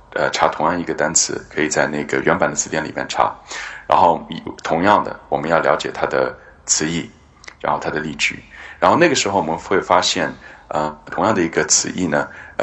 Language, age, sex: Chinese, 30-49, male